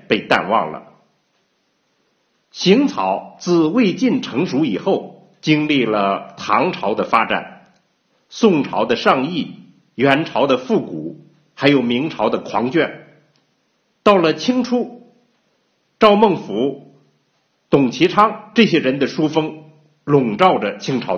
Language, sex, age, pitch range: Chinese, male, 50-69, 145-220 Hz